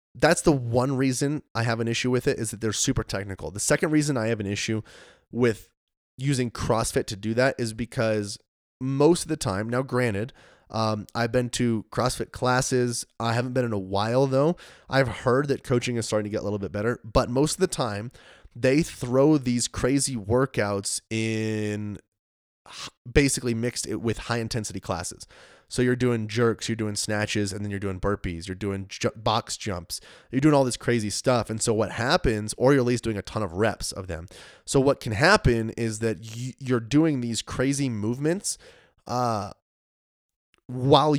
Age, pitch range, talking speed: 20-39, 100-125 Hz, 185 wpm